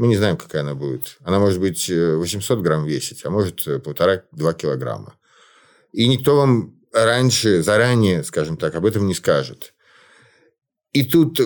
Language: Russian